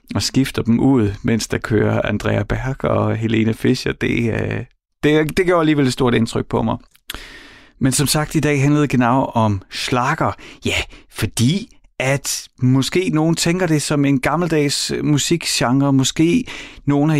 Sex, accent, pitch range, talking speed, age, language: male, native, 100-130 Hz, 150 wpm, 30-49, Danish